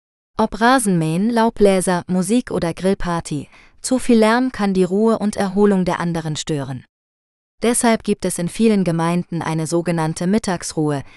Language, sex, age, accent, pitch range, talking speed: German, female, 20-39, German, 160-205 Hz, 140 wpm